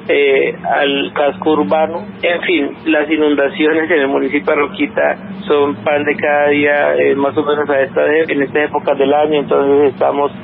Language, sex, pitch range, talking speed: Spanish, male, 140-160 Hz, 185 wpm